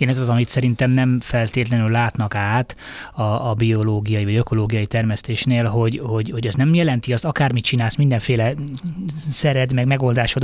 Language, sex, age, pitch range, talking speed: Hungarian, male, 20-39, 110-135 Hz, 160 wpm